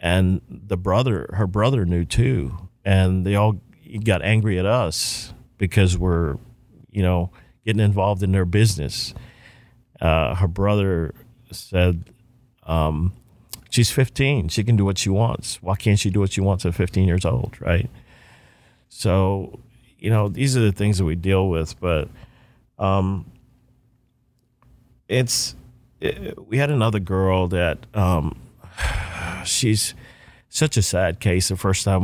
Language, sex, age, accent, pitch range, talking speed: English, male, 40-59, American, 85-110 Hz, 145 wpm